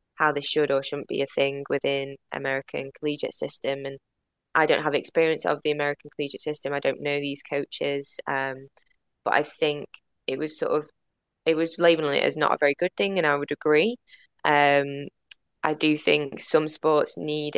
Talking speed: 190 wpm